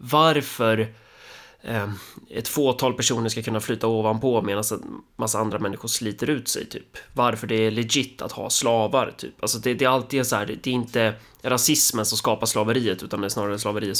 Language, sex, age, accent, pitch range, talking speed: Swedish, male, 20-39, native, 110-135 Hz, 195 wpm